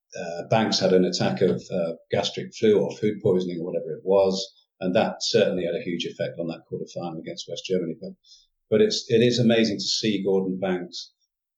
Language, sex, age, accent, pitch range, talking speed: English, male, 50-69, British, 90-120 Hz, 205 wpm